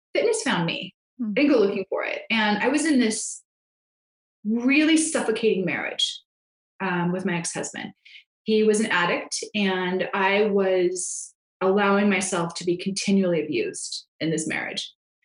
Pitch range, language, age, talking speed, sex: 195-240 Hz, English, 20-39, 140 wpm, female